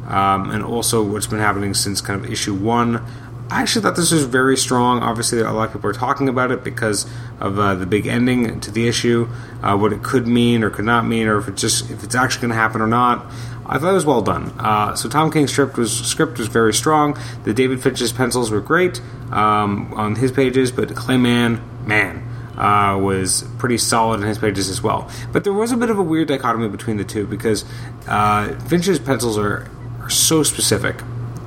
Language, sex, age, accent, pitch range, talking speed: English, male, 30-49, American, 110-130 Hz, 215 wpm